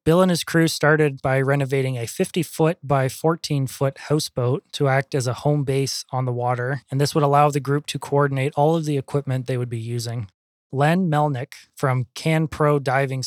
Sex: male